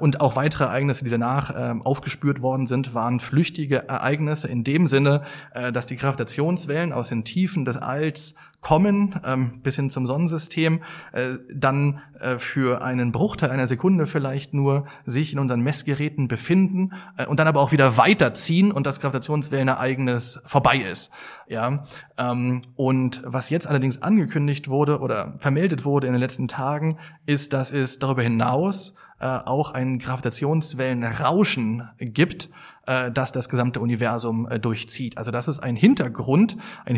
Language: German